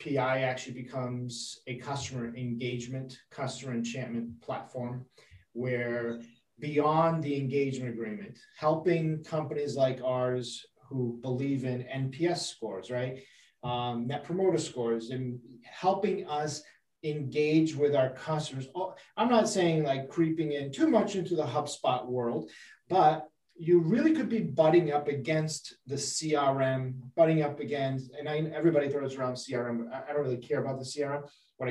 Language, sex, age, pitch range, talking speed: English, male, 30-49, 130-165 Hz, 140 wpm